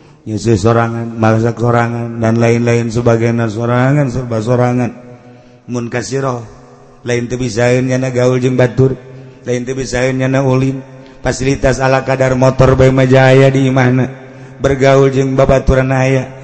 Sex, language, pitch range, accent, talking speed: male, Indonesian, 115-135 Hz, native, 110 wpm